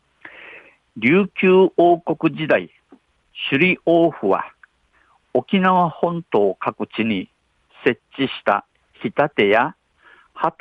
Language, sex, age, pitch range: Japanese, male, 50-69, 120-150 Hz